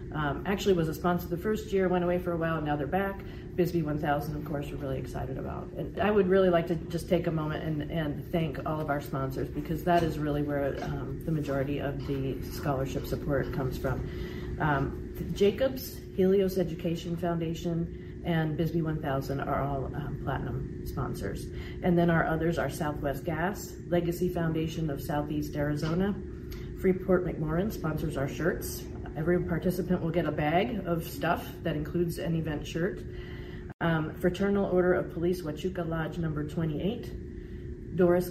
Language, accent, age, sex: English, American, 40-59, female